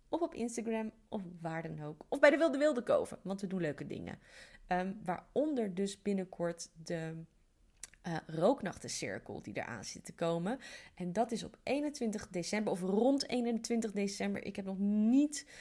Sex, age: female, 30-49